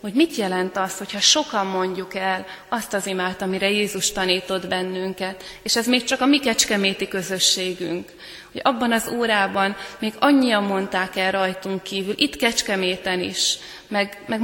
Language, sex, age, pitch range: Hungarian, female, 20-39, 190-215 Hz